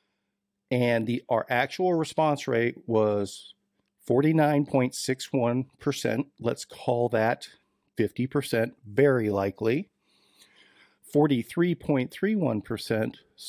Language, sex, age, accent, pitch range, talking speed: English, male, 50-69, American, 110-140 Hz, 65 wpm